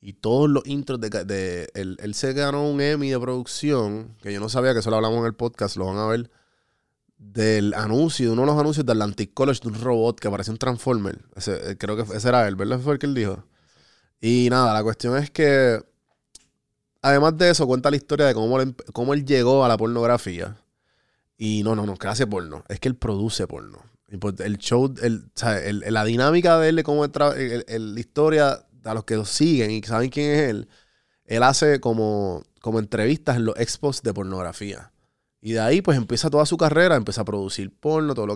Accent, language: Venezuelan, Spanish